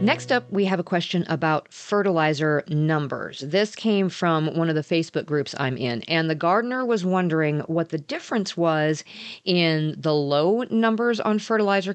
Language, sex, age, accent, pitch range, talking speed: English, female, 40-59, American, 145-185 Hz, 170 wpm